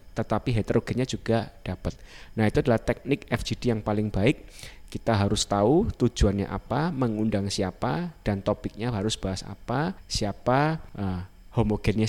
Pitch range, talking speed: 100-120 Hz, 135 wpm